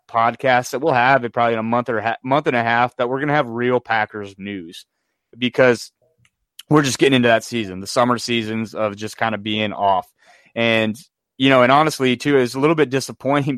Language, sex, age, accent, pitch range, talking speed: English, male, 30-49, American, 110-130 Hz, 225 wpm